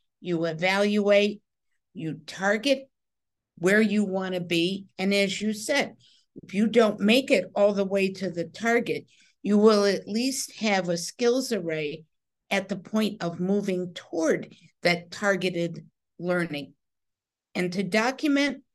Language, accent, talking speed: English, American, 140 wpm